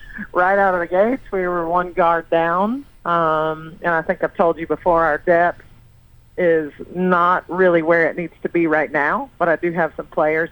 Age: 40-59